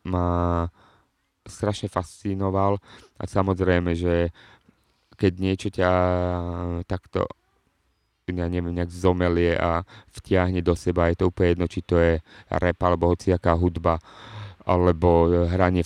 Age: 30-49